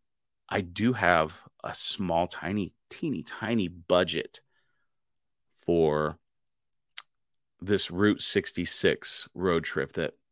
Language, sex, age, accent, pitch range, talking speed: English, male, 30-49, American, 85-100 Hz, 95 wpm